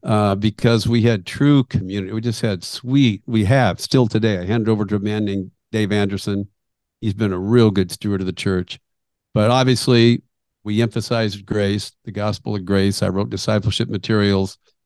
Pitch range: 100-120 Hz